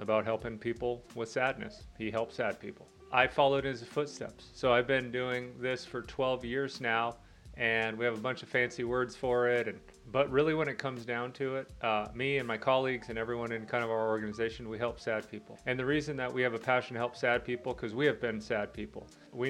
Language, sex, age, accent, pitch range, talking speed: English, male, 30-49, American, 115-130 Hz, 235 wpm